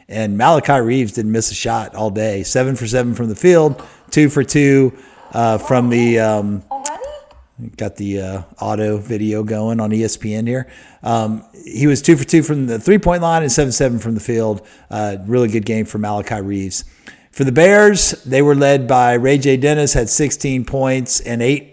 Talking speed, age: 195 wpm, 50-69